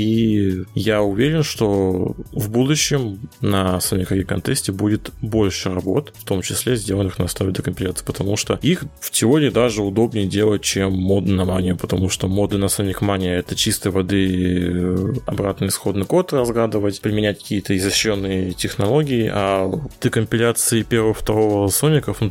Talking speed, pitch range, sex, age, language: 145 wpm, 95-115 Hz, male, 20-39, Russian